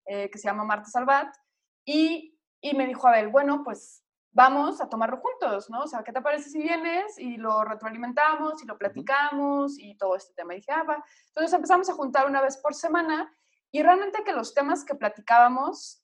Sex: female